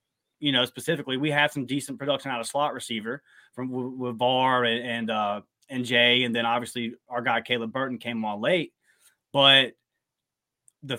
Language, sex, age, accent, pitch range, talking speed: English, male, 30-49, American, 125-150 Hz, 175 wpm